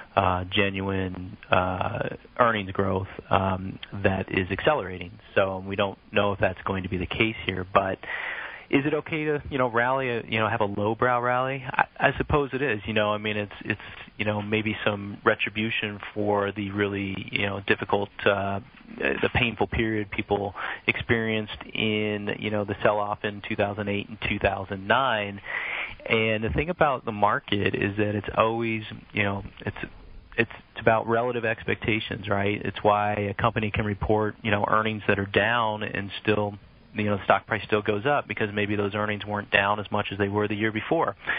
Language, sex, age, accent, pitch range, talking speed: English, male, 30-49, American, 100-110 Hz, 185 wpm